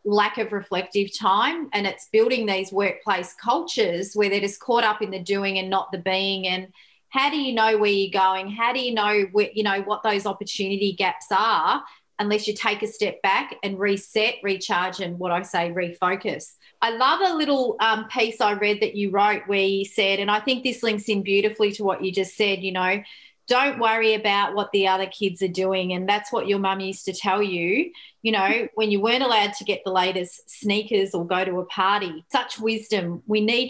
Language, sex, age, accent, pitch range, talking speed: English, female, 30-49, Australian, 195-220 Hz, 215 wpm